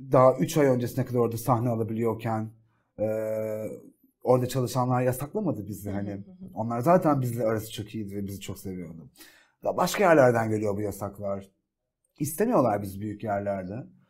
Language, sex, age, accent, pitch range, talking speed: Turkish, male, 40-59, native, 110-180 Hz, 140 wpm